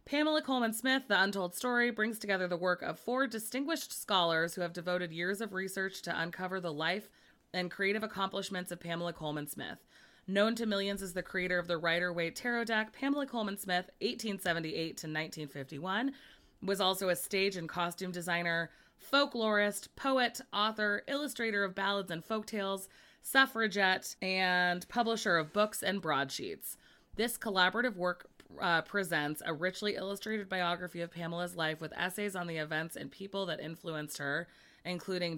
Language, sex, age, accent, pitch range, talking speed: English, female, 20-39, American, 170-215 Hz, 155 wpm